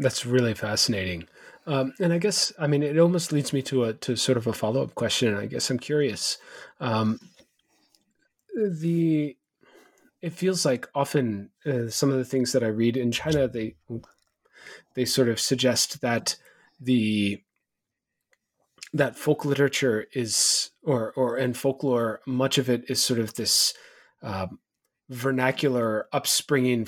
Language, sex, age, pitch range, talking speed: English, male, 30-49, 115-140 Hz, 150 wpm